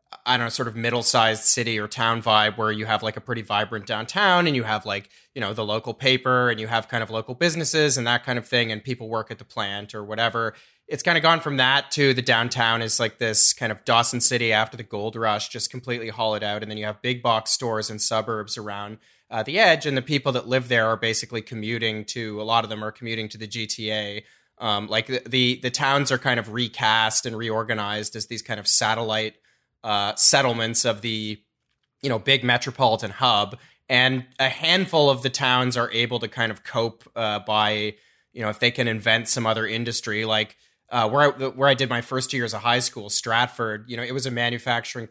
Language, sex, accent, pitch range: English, male, American, 110-130 Hz